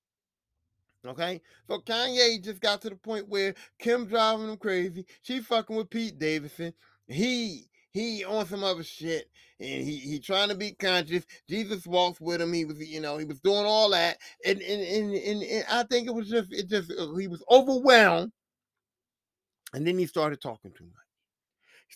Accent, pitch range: American, 190-245 Hz